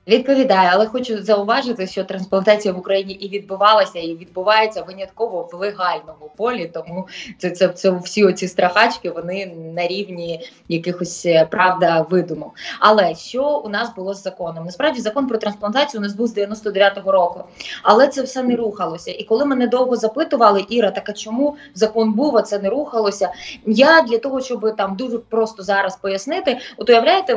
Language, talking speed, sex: Ukrainian, 165 wpm, female